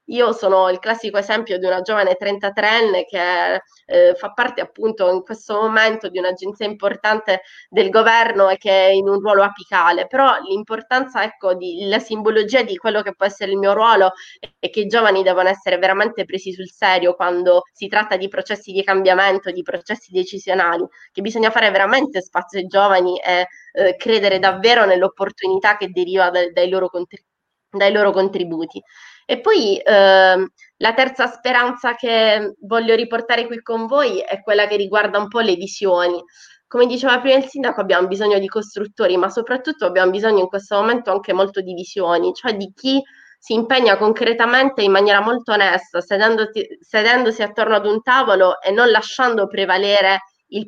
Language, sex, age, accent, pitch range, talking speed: Italian, female, 20-39, native, 190-230 Hz, 165 wpm